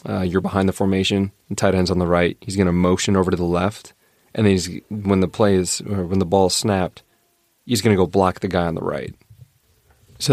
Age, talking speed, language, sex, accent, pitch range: 30-49, 245 wpm, English, male, American, 85-95 Hz